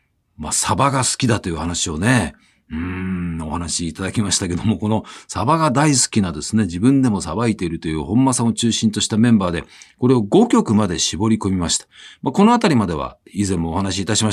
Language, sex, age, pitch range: Japanese, male, 50-69, 95-160 Hz